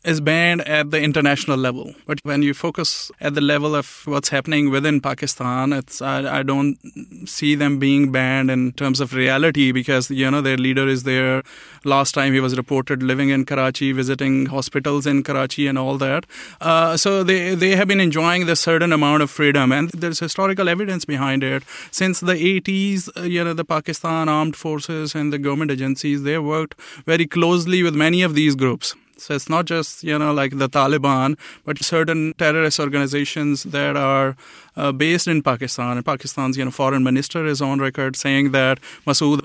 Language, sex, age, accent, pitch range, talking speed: English, male, 30-49, Indian, 140-165 Hz, 185 wpm